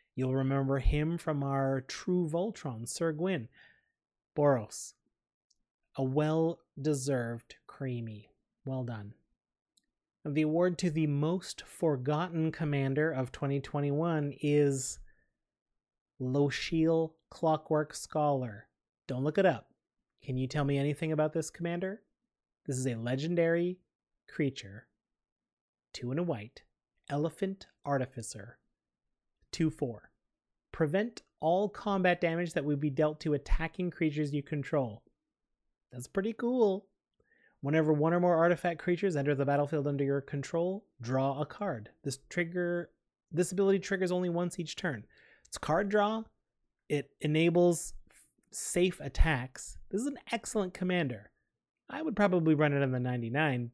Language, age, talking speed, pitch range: English, 30-49, 125 wpm, 135-175 Hz